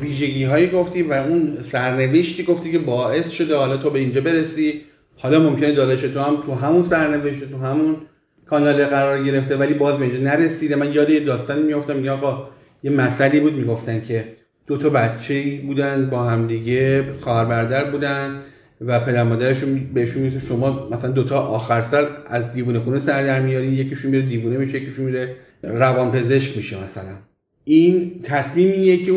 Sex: male